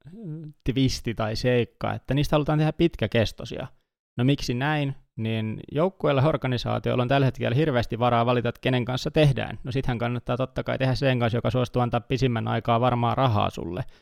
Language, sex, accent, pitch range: Finnish, male, native, 110-130 Hz